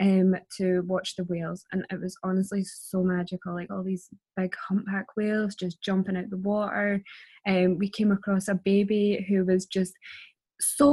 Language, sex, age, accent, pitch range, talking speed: English, female, 10-29, British, 190-215 Hz, 175 wpm